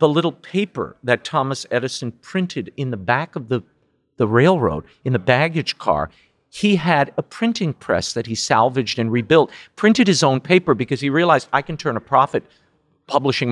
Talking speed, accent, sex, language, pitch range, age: 180 wpm, American, male, English, 120-165 Hz, 50-69